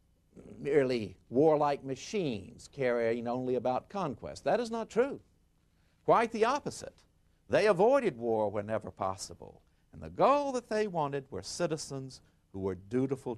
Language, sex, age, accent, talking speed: Italian, male, 60-79, American, 135 wpm